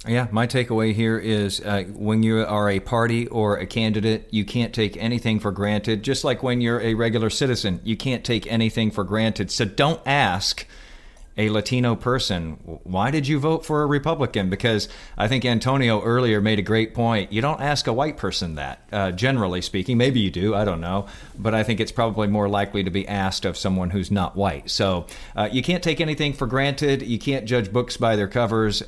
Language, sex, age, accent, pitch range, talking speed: English, male, 40-59, American, 105-125 Hz, 210 wpm